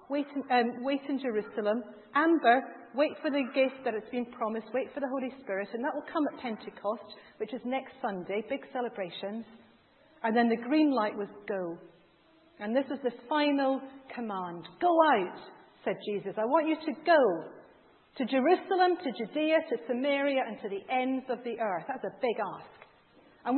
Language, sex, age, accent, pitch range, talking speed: English, female, 40-59, British, 220-290 Hz, 180 wpm